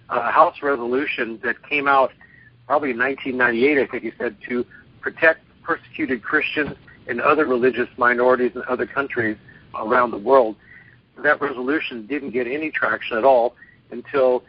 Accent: American